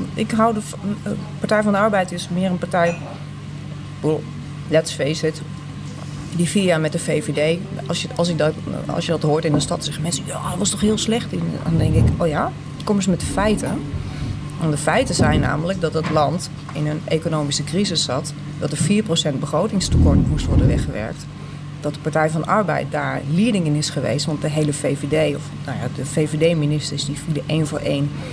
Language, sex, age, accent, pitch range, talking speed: Dutch, female, 30-49, Dutch, 150-170 Hz, 205 wpm